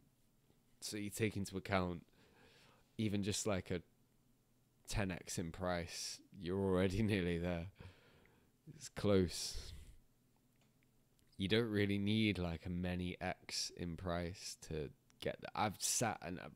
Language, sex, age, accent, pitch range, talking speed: English, male, 20-39, British, 85-105 Hz, 125 wpm